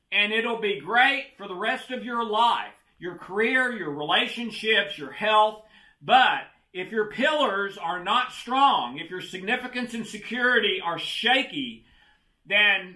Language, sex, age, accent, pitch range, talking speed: English, male, 40-59, American, 185-235 Hz, 145 wpm